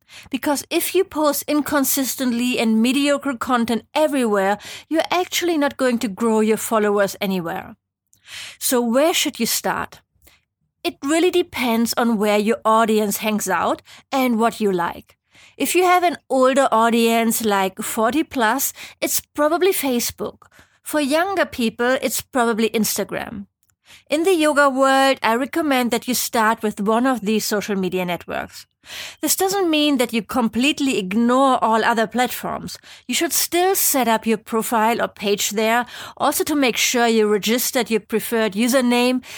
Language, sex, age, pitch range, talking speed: English, female, 30-49, 220-285 Hz, 150 wpm